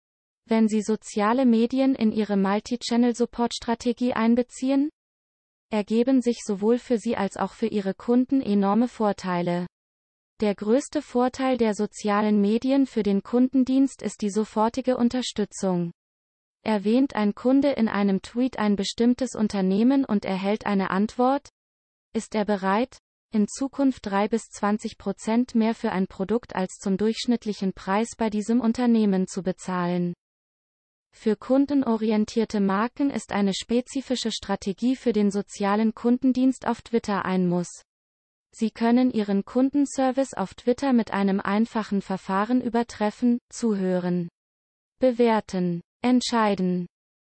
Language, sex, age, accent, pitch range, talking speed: German, female, 20-39, German, 200-245 Hz, 125 wpm